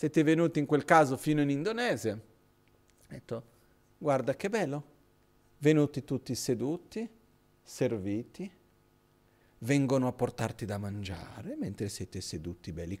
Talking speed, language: 120 wpm, Italian